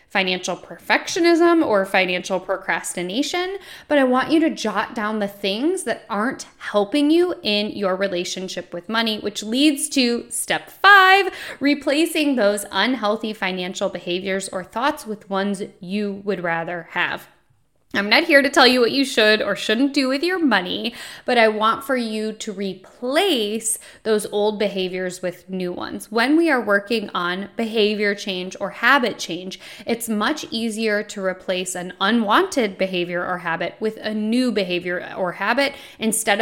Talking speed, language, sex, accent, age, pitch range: 160 wpm, English, female, American, 10-29, 190-250 Hz